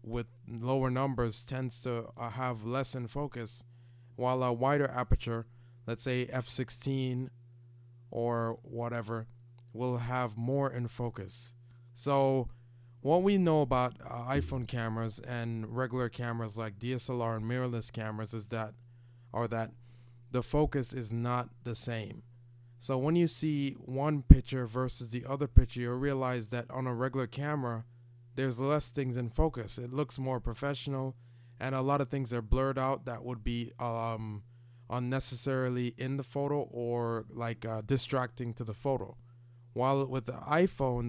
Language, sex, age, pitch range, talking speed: English, male, 20-39, 120-130 Hz, 150 wpm